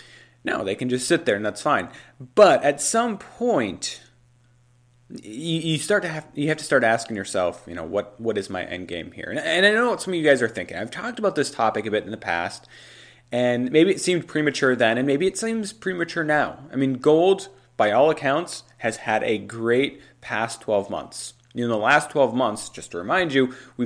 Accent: American